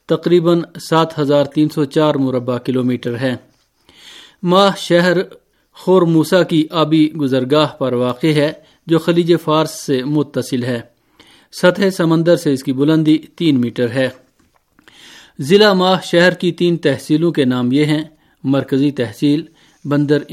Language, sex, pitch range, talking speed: Urdu, male, 135-165 Hz, 135 wpm